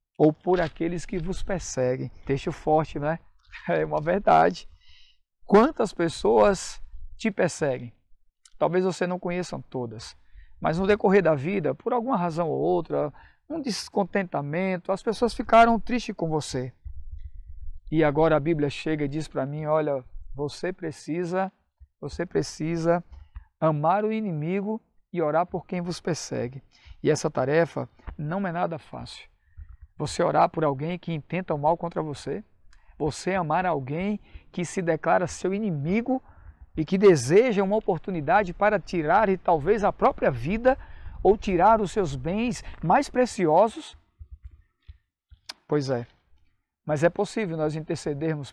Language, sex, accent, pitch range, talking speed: Portuguese, male, Brazilian, 130-185 Hz, 140 wpm